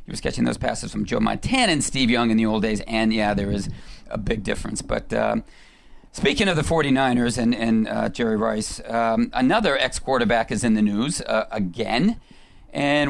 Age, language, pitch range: 40-59, English, 115-155 Hz